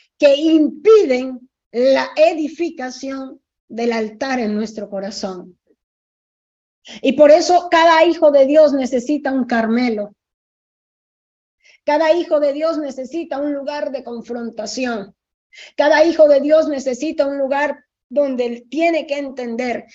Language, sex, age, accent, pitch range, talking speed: Spanish, female, 40-59, American, 235-290 Hz, 120 wpm